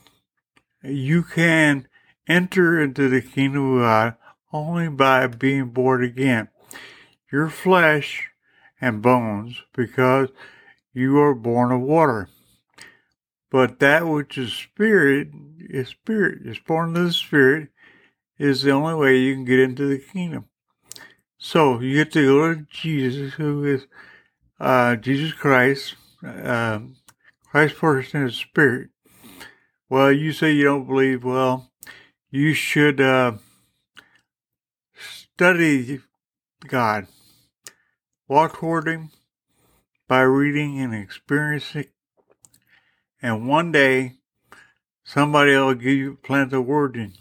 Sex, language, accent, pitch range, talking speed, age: male, English, American, 130-150 Hz, 115 wpm, 60-79